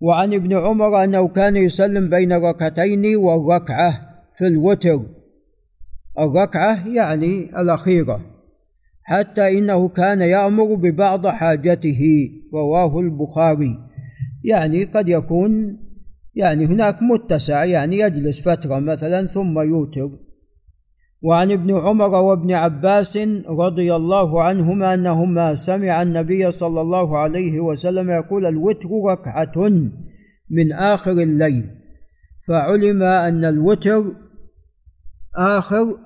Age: 50-69